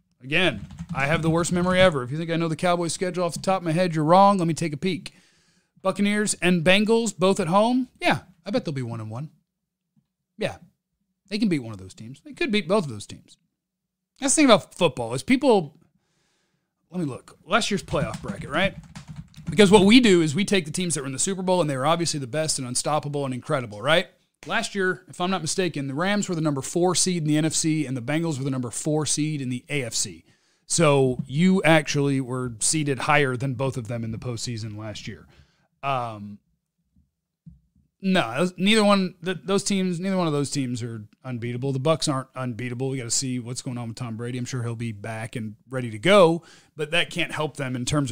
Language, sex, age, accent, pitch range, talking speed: English, male, 40-59, American, 130-180 Hz, 230 wpm